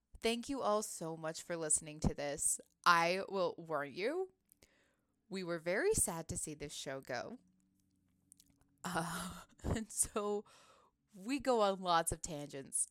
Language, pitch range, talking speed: English, 165-235 Hz, 145 wpm